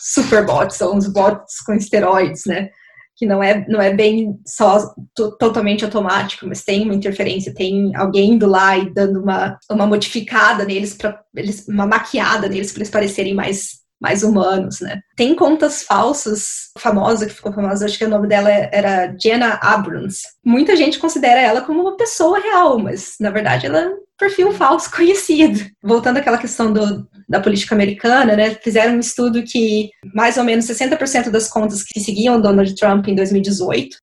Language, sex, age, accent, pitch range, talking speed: Portuguese, female, 20-39, Brazilian, 200-235 Hz, 175 wpm